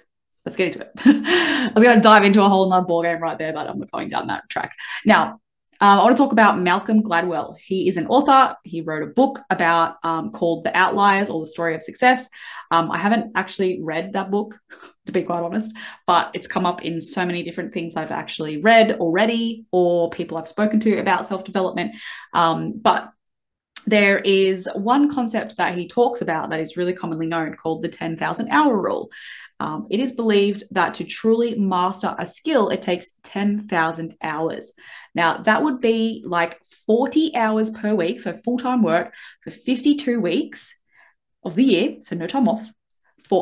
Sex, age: female, 20-39